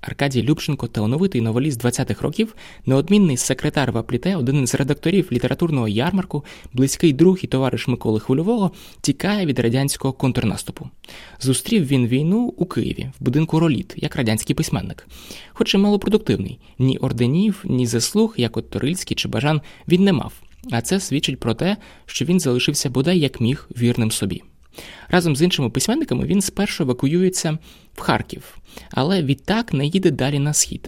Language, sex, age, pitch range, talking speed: Ukrainian, male, 20-39, 120-175 Hz, 155 wpm